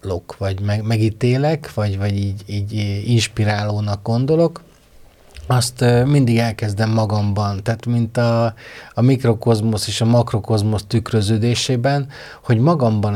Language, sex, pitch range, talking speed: Hungarian, male, 105-120 Hz, 110 wpm